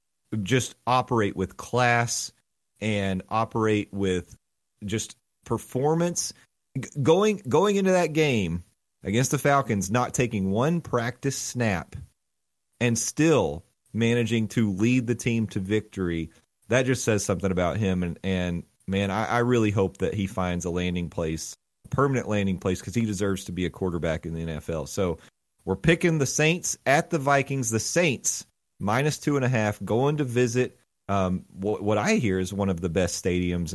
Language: English